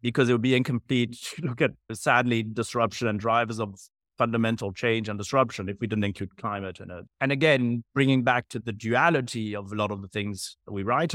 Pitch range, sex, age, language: 105-140 Hz, male, 30-49, English